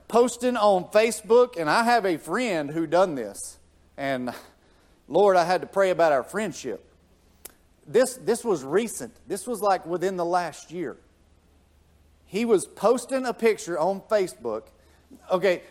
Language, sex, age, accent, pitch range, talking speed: English, male, 50-69, American, 135-215 Hz, 150 wpm